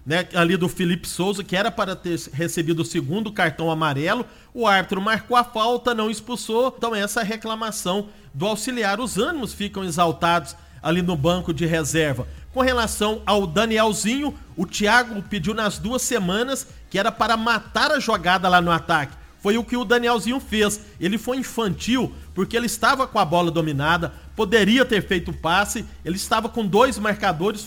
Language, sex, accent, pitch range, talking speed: Portuguese, male, Brazilian, 180-240 Hz, 175 wpm